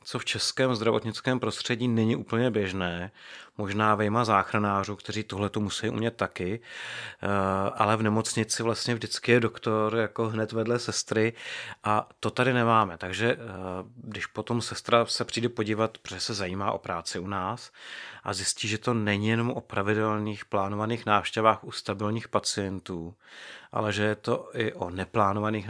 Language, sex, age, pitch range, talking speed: Czech, male, 30-49, 105-115 Hz, 150 wpm